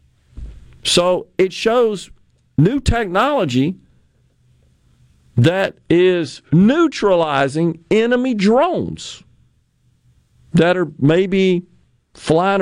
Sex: male